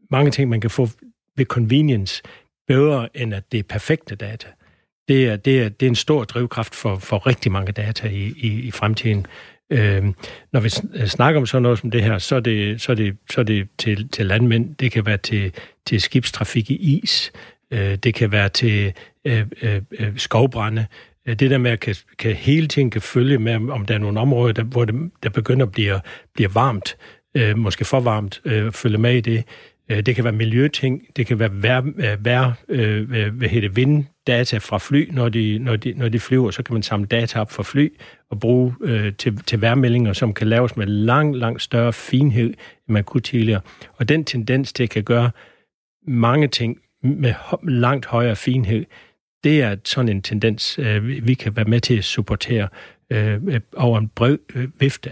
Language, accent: Danish, native